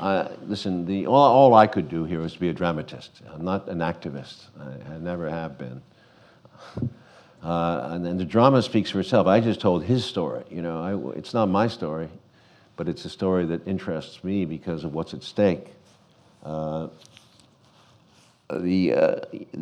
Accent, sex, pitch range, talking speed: American, male, 85-100 Hz, 165 wpm